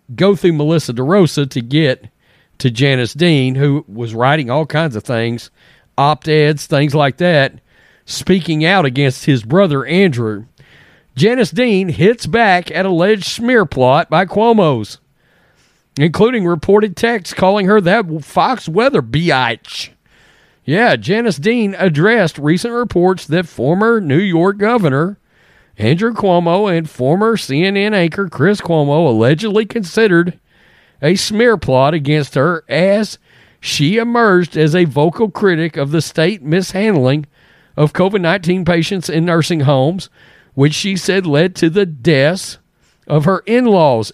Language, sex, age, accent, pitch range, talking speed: English, male, 40-59, American, 145-205 Hz, 135 wpm